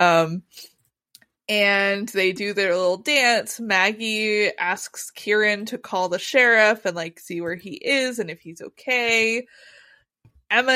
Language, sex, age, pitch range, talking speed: English, female, 20-39, 175-215 Hz, 140 wpm